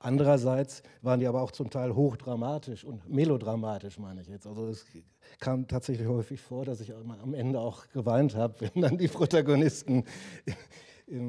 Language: German